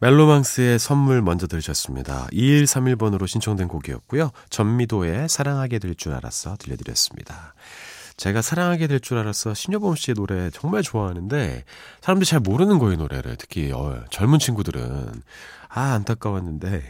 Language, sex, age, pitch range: Korean, male, 30-49, 90-140 Hz